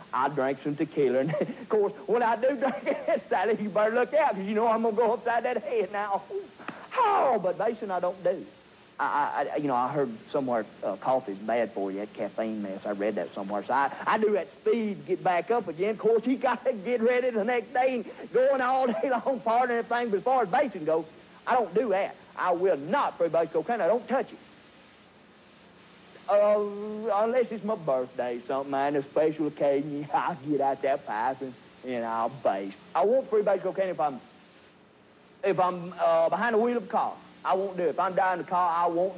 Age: 50-69